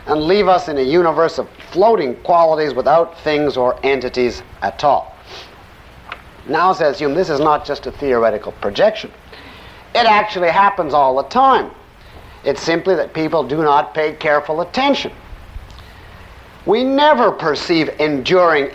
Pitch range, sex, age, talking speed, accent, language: 140-205 Hz, male, 50-69, 140 wpm, American, English